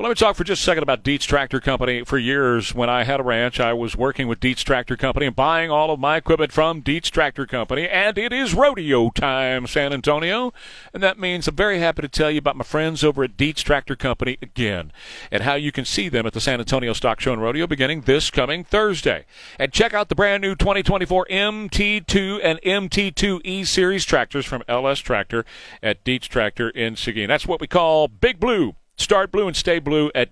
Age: 40-59